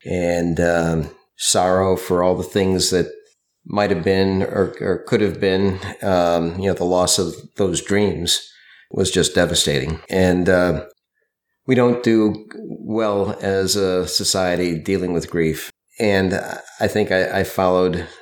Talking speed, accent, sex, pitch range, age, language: 150 wpm, American, male, 85-100 Hz, 40-59, English